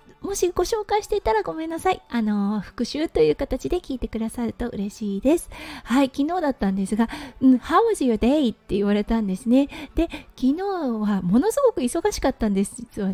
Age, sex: 20-39, female